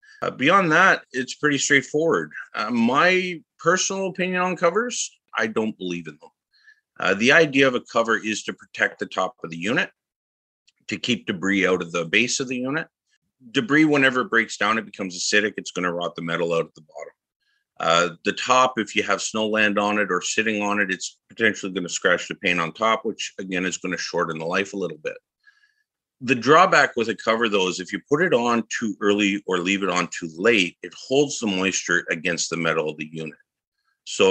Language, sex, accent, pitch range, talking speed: English, male, American, 95-140 Hz, 215 wpm